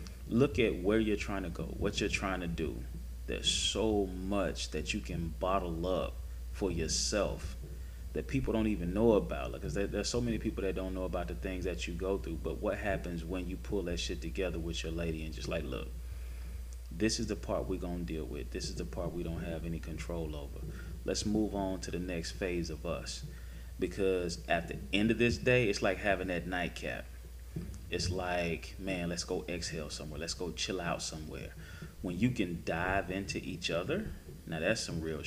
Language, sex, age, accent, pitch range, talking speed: English, male, 30-49, American, 80-95 Hz, 210 wpm